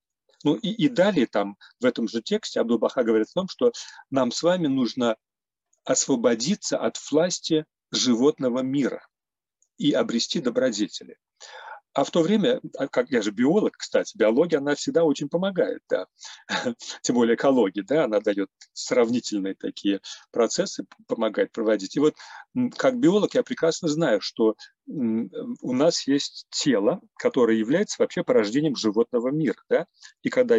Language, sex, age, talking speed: Russian, male, 40-59, 135 wpm